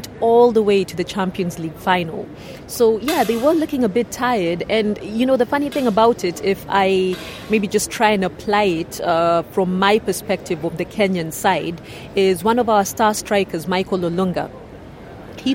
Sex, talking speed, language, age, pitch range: female, 190 wpm, English, 30-49, 180-215 Hz